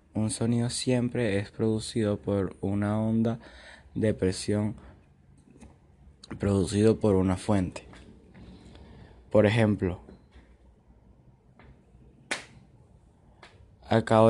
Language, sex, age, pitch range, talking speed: Spanish, male, 20-39, 95-115 Hz, 70 wpm